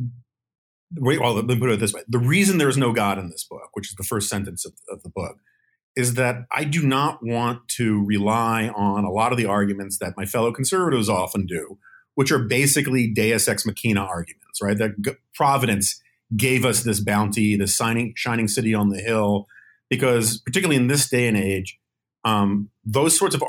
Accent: American